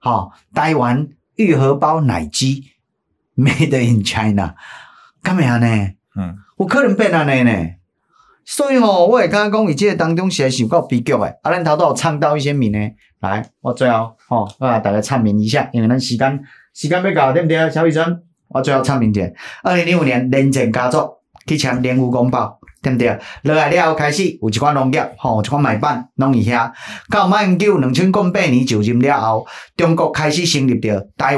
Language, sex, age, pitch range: Chinese, male, 30-49, 120-160 Hz